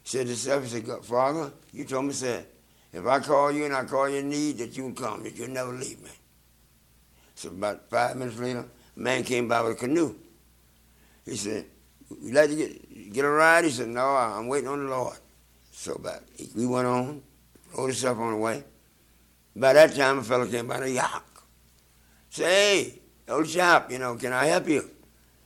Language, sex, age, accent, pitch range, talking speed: English, male, 60-79, American, 110-140 Hz, 210 wpm